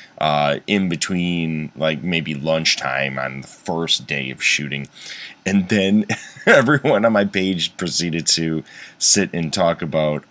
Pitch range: 75-100 Hz